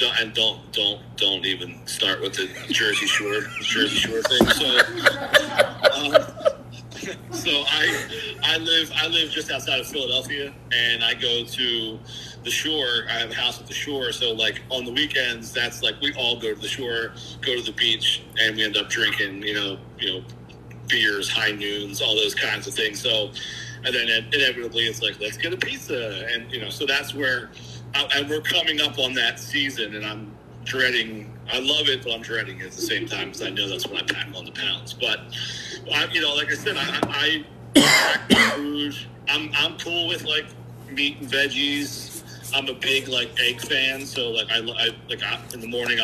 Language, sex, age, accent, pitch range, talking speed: English, male, 40-59, American, 115-140 Hz, 200 wpm